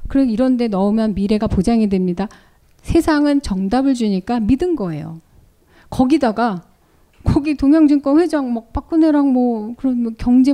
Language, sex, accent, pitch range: Korean, female, native, 210-290 Hz